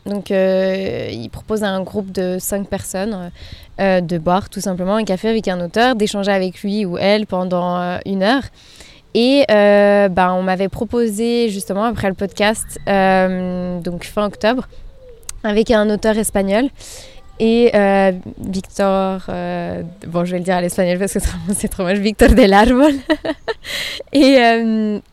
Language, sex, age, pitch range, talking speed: French, female, 20-39, 190-230 Hz, 160 wpm